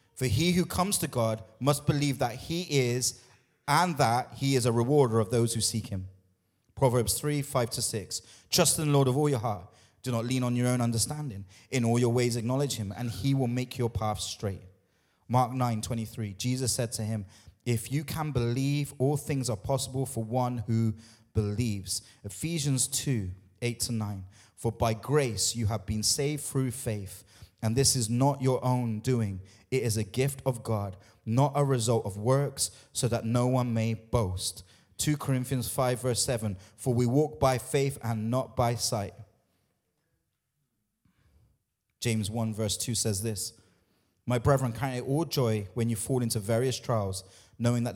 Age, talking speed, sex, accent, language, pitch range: 30-49, 185 wpm, male, British, English, 110-130 Hz